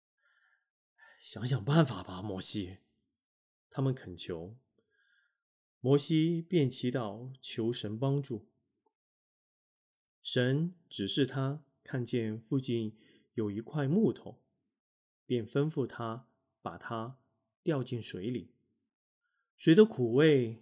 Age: 20-39